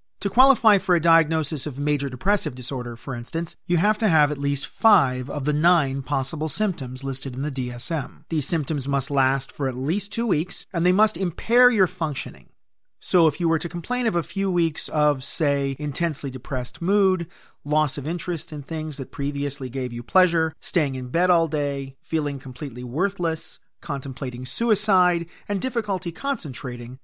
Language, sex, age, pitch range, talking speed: English, male, 40-59, 140-185 Hz, 180 wpm